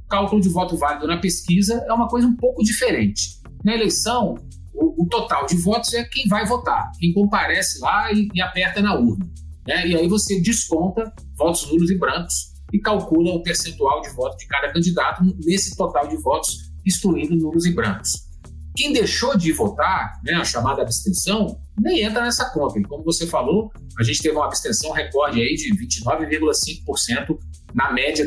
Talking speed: 180 wpm